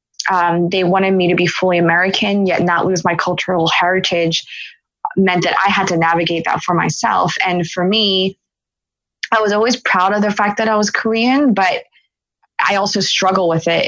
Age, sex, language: 20-39, female, English